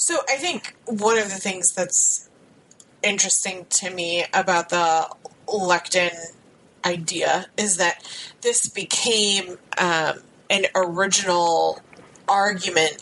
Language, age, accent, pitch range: English, 30-49, American, 170-195 Hz